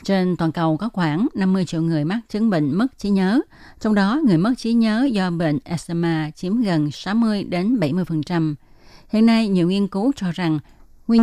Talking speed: 180 wpm